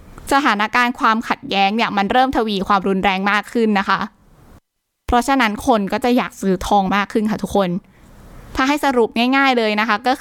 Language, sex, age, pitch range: Thai, female, 20-39, 205-260 Hz